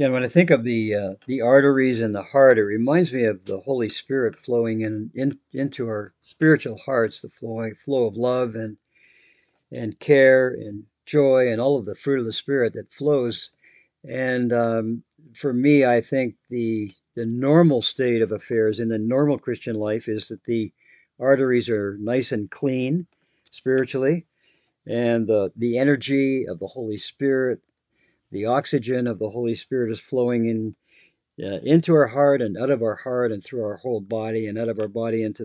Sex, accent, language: male, American, English